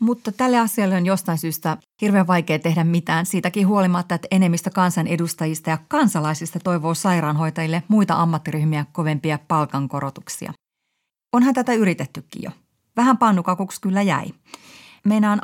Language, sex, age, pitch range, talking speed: Finnish, female, 30-49, 160-205 Hz, 125 wpm